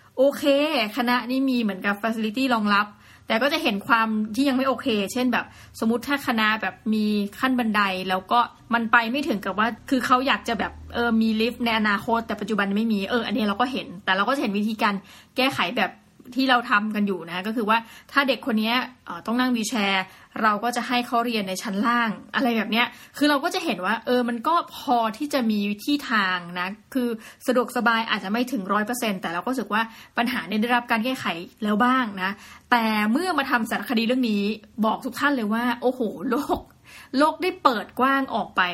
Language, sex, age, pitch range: Thai, female, 20-39, 210-250 Hz